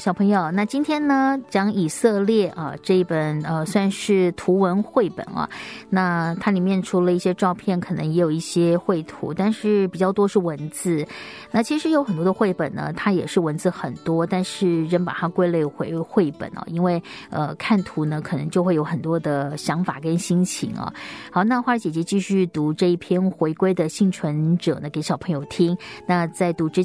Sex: female